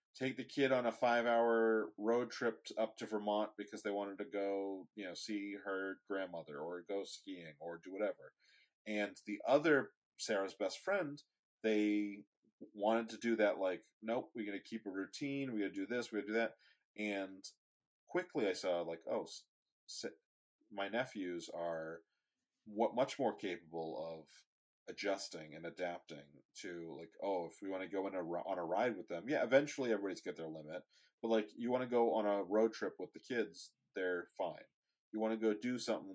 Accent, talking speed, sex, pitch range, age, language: American, 190 wpm, male, 95-115 Hz, 30-49, English